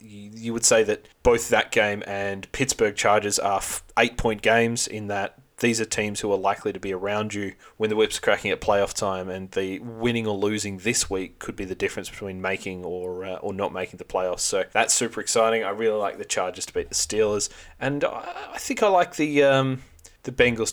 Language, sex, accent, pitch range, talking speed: English, male, Australian, 95-120 Hz, 215 wpm